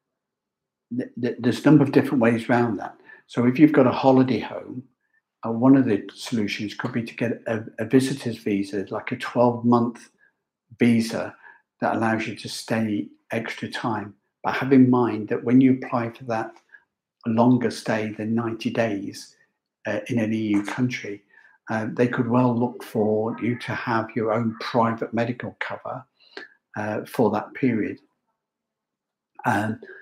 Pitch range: 110-130 Hz